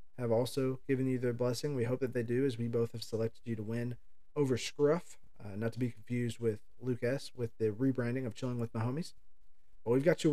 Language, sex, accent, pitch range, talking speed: English, male, American, 110-135 Hz, 240 wpm